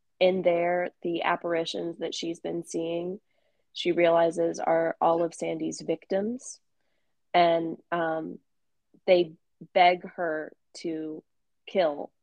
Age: 20-39